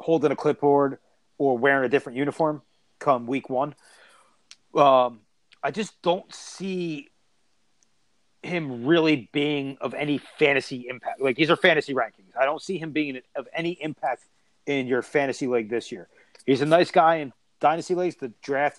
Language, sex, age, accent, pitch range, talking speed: English, male, 30-49, American, 135-170 Hz, 165 wpm